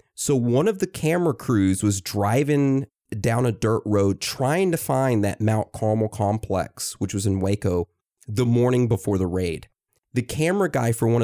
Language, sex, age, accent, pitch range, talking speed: English, male, 30-49, American, 95-130 Hz, 175 wpm